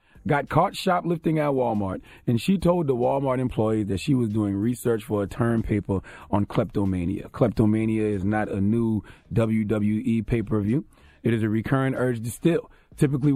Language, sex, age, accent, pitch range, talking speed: English, male, 30-49, American, 110-140 Hz, 165 wpm